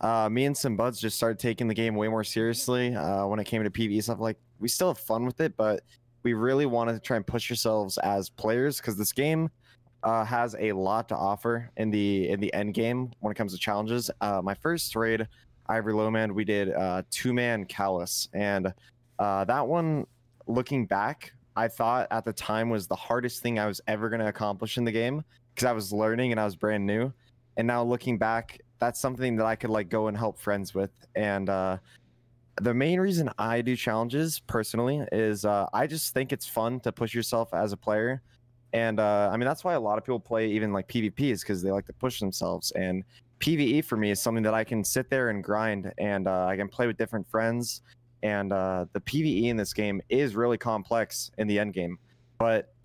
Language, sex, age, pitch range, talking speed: English, male, 20-39, 105-120 Hz, 225 wpm